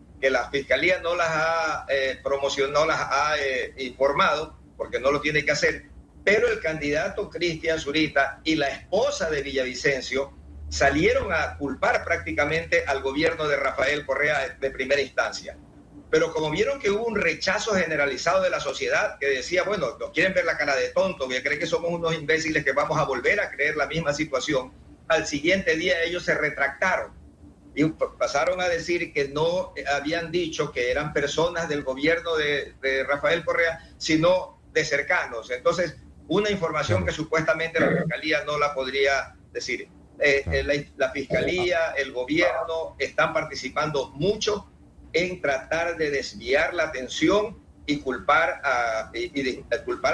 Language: Spanish